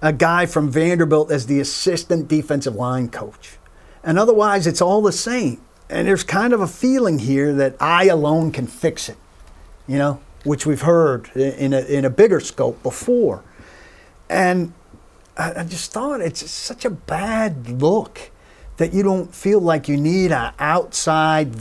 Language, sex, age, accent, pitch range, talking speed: English, male, 50-69, American, 150-230 Hz, 165 wpm